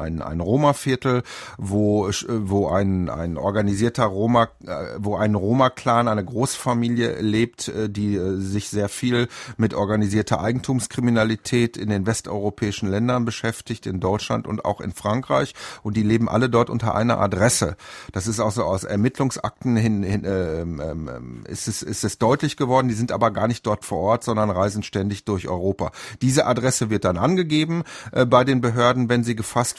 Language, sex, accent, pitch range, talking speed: German, male, German, 100-125 Hz, 165 wpm